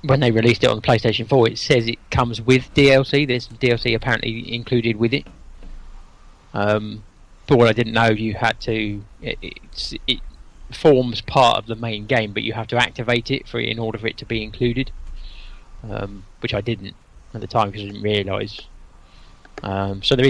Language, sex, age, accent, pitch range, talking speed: English, male, 20-39, British, 95-120 Hz, 195 wpm